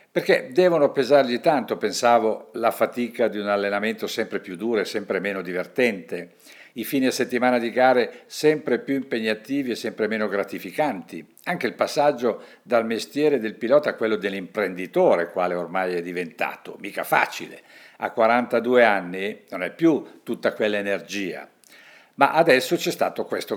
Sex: male